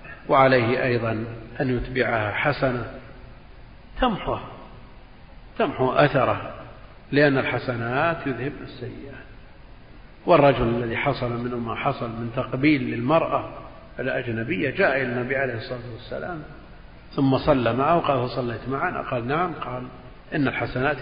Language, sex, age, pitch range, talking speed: Arabic, male, 50-69, 120-145 Hz, 110 wpm